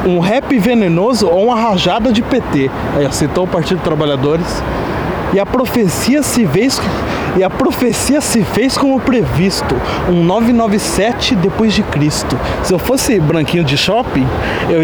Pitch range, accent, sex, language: 160-240 Hz, Brazilian, male, Portuguese